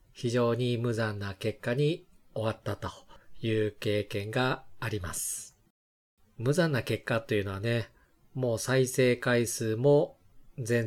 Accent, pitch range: native, 110-130 Hz